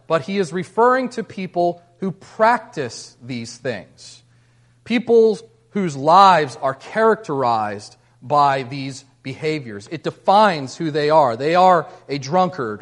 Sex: male